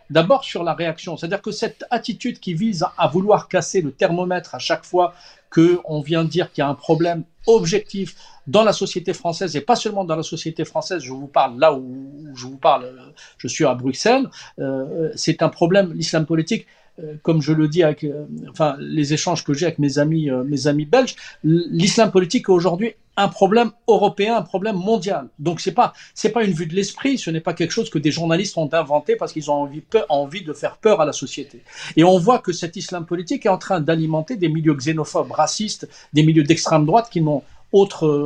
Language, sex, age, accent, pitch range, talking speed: French, male, 50-69, French, 150-190 Hz, 210 wpm